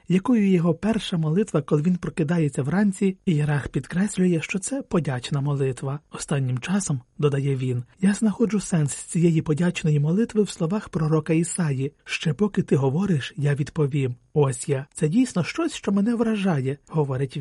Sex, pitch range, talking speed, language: male, 145-195 Hz, 155 wpm, Ukrainian